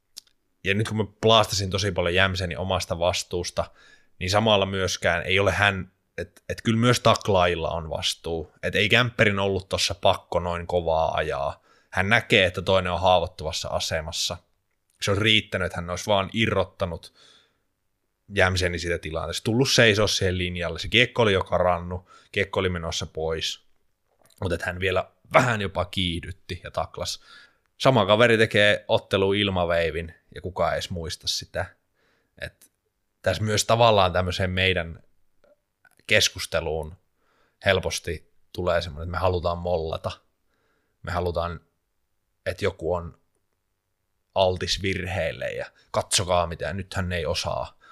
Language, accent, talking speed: Finnish, native, 140 wpm